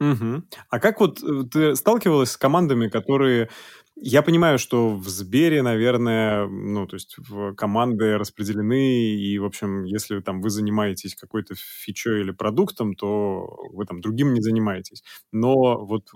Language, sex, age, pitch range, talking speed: Russian, male, 20-39, 100-135 Hz, 150 wpm